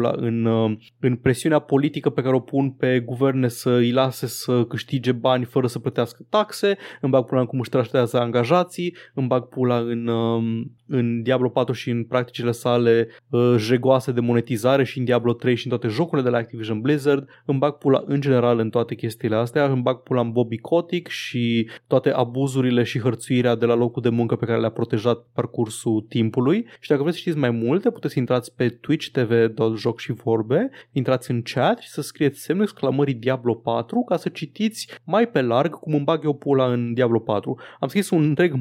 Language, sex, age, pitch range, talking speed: Romanian, male, 20-39, 120-155 Hz, 195 wpm